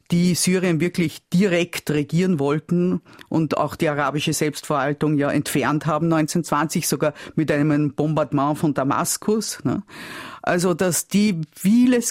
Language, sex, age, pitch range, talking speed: German, female, 50-69, 150-180 Hz, 125 wpm